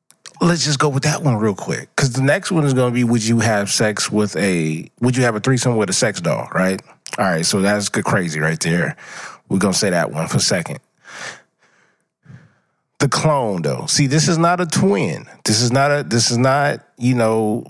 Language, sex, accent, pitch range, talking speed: English, male, American, 110-140 Hz, 220 wpm